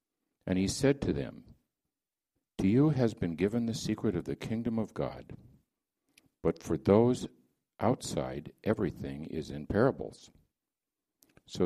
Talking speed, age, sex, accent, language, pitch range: 135 wpm, 60-79, male, American, English, 80-110 Hz